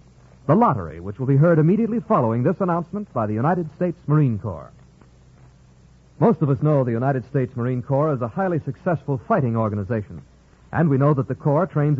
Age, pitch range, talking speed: 50-69, 130-190 Hz, 190 wpm